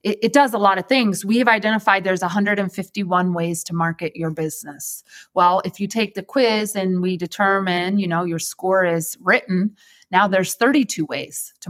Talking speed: 190 wpm